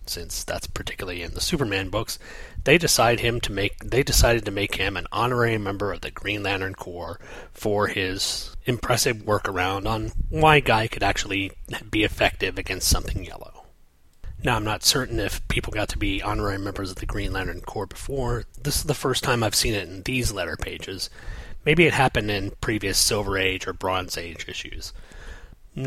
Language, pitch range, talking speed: English, 95-115 Hz, 185 wpm